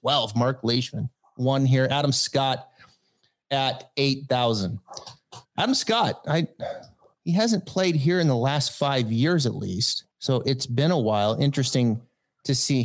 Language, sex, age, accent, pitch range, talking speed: English, male, 30-49, American, 120-155 Hz, 150 wpm